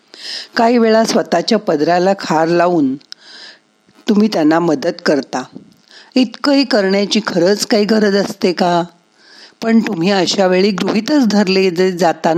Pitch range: 170-225 Hz